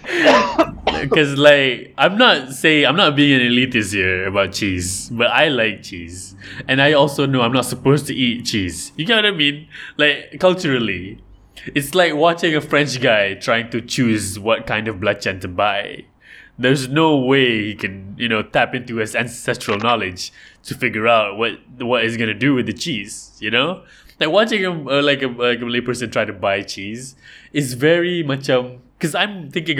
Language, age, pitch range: English, 20-39, 110-150 Hz